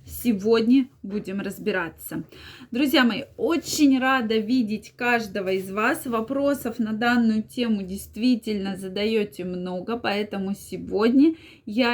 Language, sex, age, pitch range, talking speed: Russian, female, 20-39, 200-260 Hz, 105 wpm